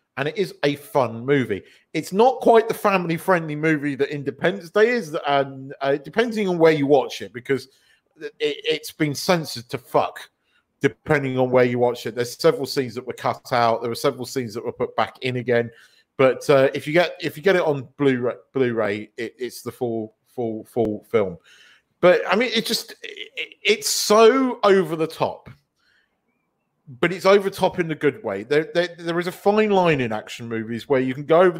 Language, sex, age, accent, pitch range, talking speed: English, male, 40-59, British, 130-180 Hz, 205 wpm